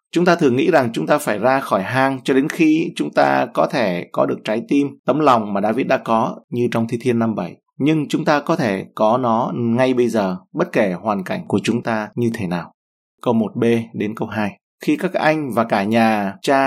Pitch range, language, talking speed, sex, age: 110-135 Hz, Vietnamese, 240 wpm, male, 20-39